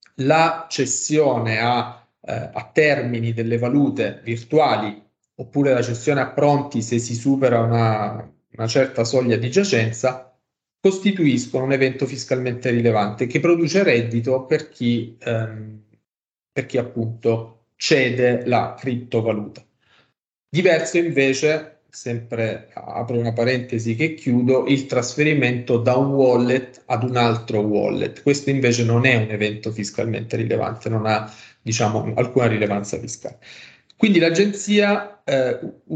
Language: Italian